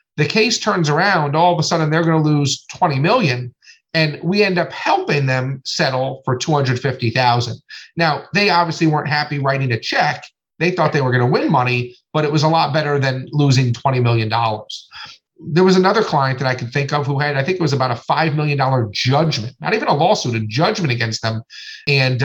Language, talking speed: English, 205 wpm